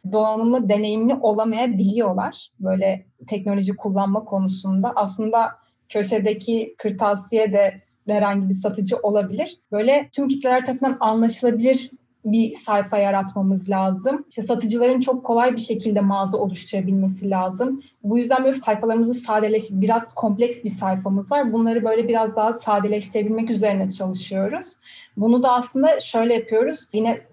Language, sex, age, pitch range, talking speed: Turkish, female, 30-49, 210-255 Hz, 125 wpm